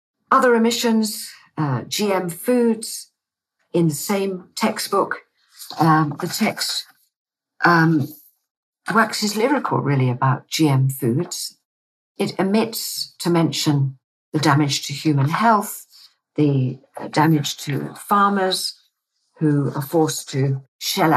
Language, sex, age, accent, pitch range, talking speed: English, female, 50-69, British, 140-195 Hz, 110 wpm